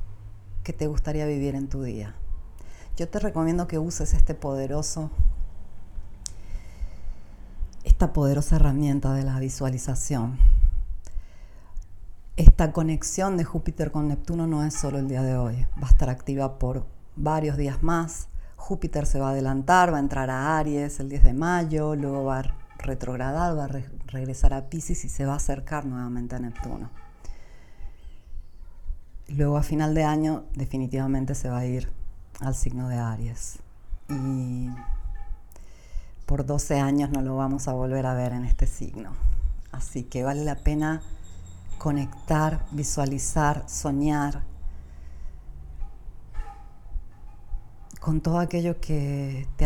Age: 40-59